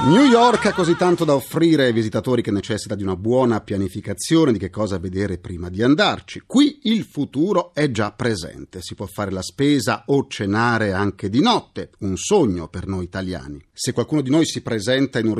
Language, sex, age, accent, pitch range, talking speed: Italian, male, 40-59, native, 100-140 Hz, 200 wpm